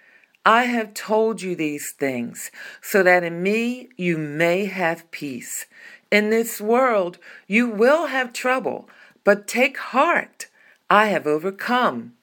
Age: 50-69